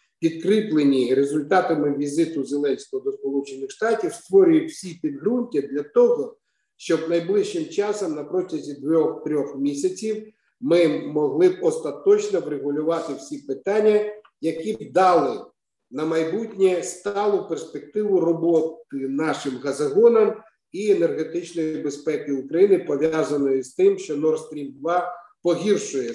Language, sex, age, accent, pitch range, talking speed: Ukrainian, male, 50-69, native, 145-210 Hz, 110 wpm